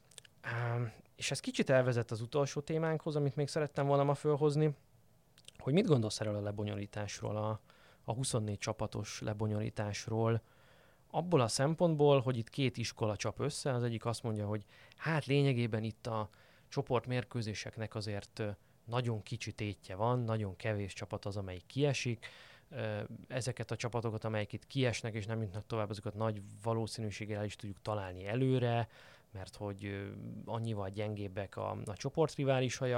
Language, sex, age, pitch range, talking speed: Hungarian, male, 20-39, 105-135 Hz, 140 wpm